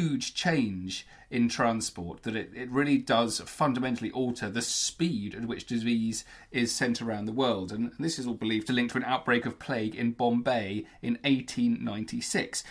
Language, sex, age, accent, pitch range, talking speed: English, male, 40-59, British, 120-165 Hz, 175 wpm